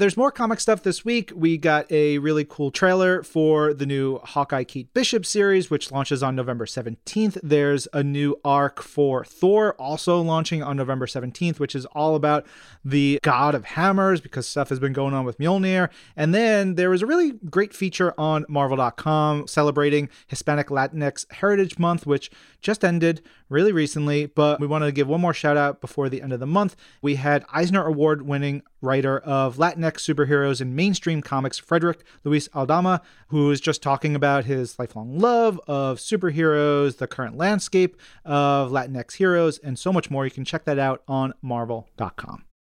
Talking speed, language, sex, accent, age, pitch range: 180 wpm, English, male, American, 30-49, 140-175 Hz